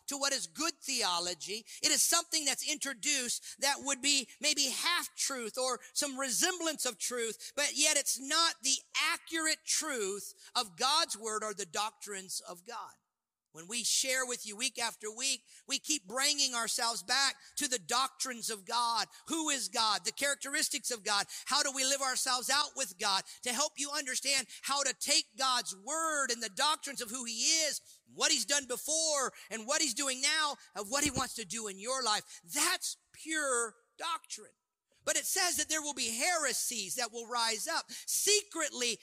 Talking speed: 185 wpm